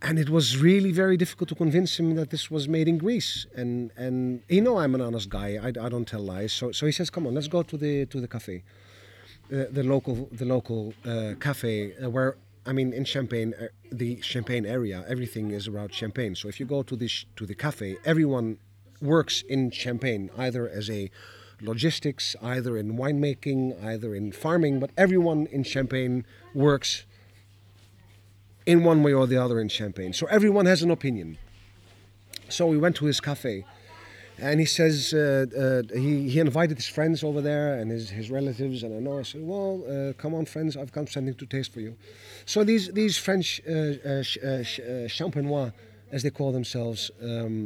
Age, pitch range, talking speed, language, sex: 40-59, 105-145 Hz, 195 wpm, English, male